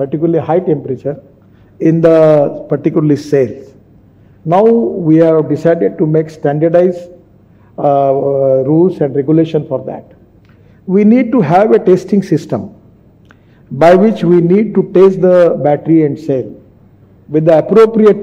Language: English